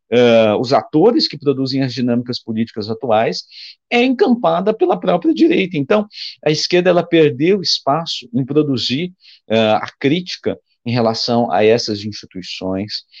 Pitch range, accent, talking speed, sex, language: 110-160 Hz, Brazilian, 135 wpm, male, Portuguese